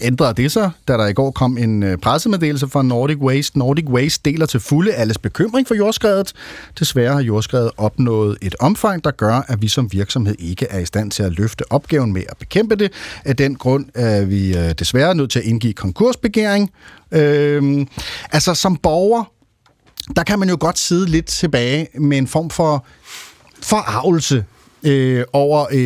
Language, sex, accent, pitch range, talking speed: Danish, male, native, 115-155 Hz, 175 wpm